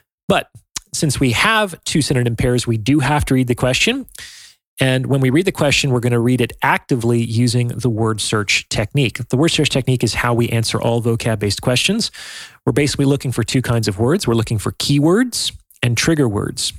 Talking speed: 205 wpm